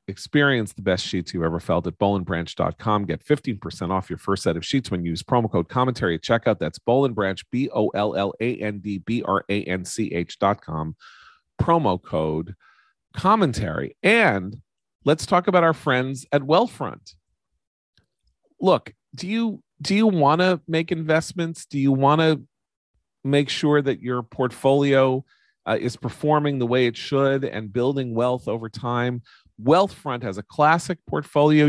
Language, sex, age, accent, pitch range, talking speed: English, male, 40-59, American, 95-145 Hz, 140 wpm